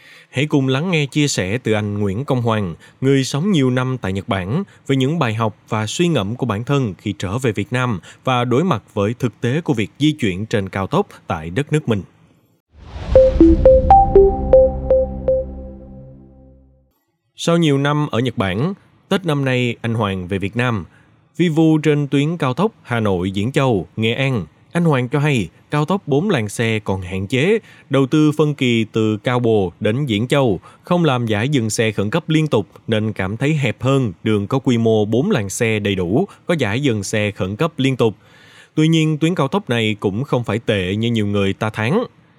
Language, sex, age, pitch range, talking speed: Vietnamese, male, 20-39, 105-145 Hz, 200 wpm